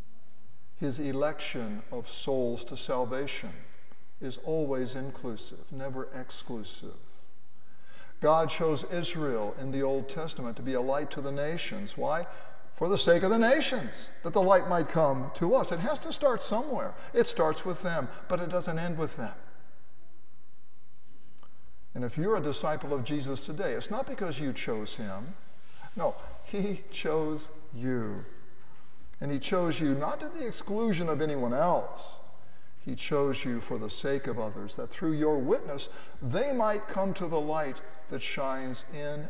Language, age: English, 60-79